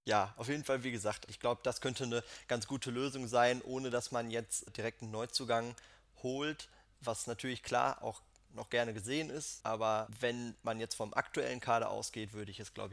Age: 20-39